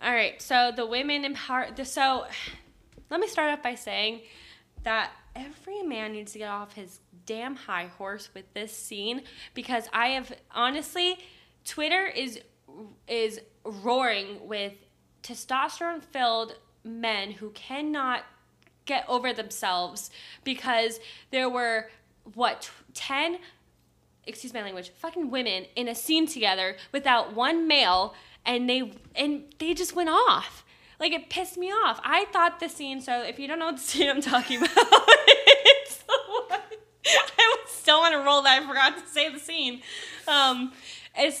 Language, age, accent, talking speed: English, 10-29, American, 150 wpm